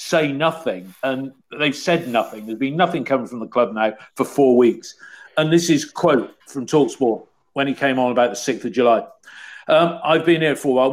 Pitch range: 125-165 Hz